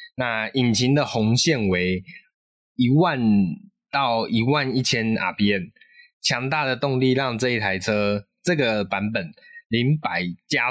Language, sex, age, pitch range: Chinese, male, 20-39, 110-160 Hz